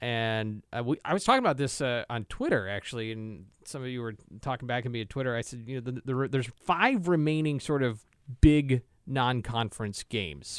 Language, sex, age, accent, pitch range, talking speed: English, male, 30-49, American, 105-135 Hz, 215 wpm